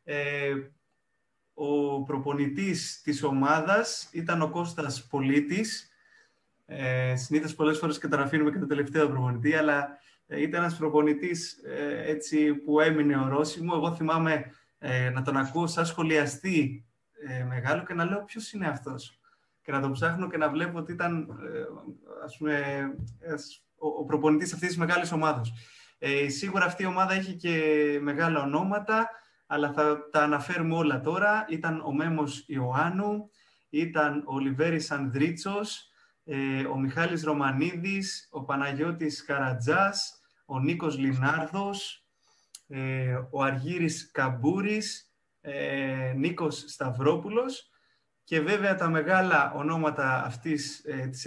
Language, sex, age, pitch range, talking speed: Greek, male, 20-39, 140-170 Hz, 130 wpm